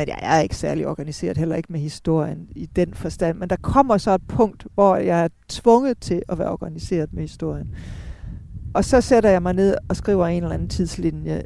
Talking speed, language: 210 wpm, Danish